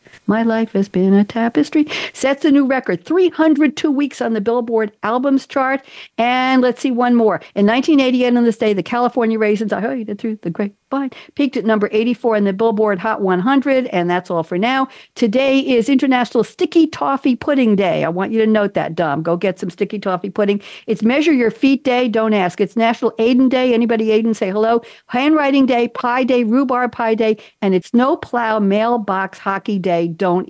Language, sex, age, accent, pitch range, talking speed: English, female, 60-79, American, 185-250 Hz, 200 wpm